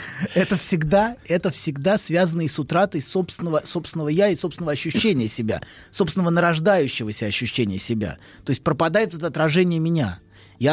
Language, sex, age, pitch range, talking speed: Russian, male, 30-49, 130-195 Hz, 140 wpm